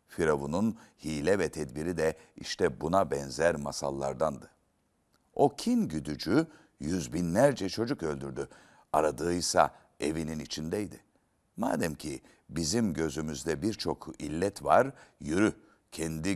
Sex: male